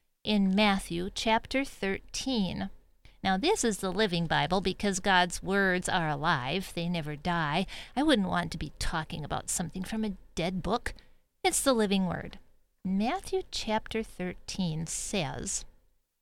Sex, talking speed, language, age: female, 140 wpm, English, 40-59